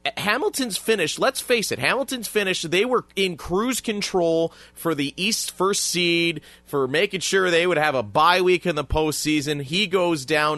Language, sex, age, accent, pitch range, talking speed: English, male, 30-49, American, 125-170 Hz, 180 wpm